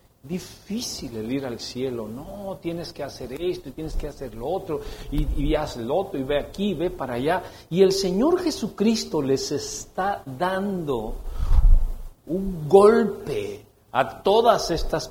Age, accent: 50-69, Mexican